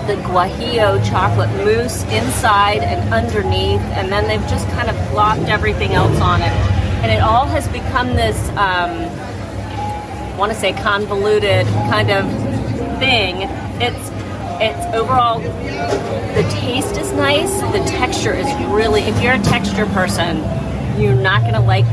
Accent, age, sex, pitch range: American, 40-59, female, 100-120 Hz